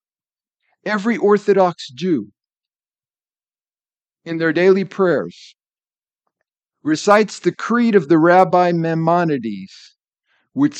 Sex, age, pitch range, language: male, 50-69, 165-205 Hz, English